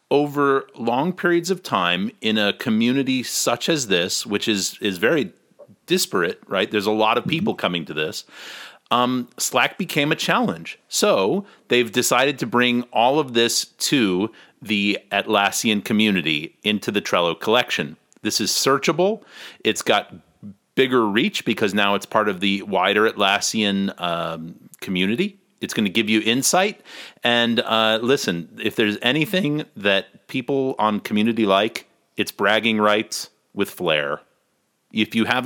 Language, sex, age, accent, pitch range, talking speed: English, male, 30-49, American, 100-140 Hz, 150 wpm